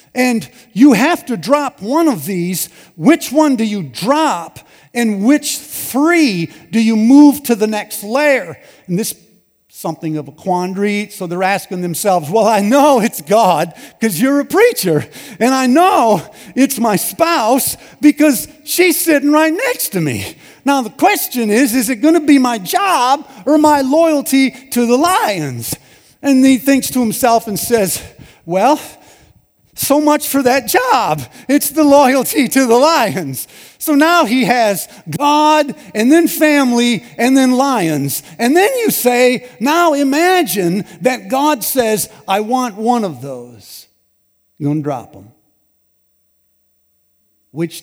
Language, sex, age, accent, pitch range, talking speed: English, male, 50-69, American, 190-285 Hz, 155 wpm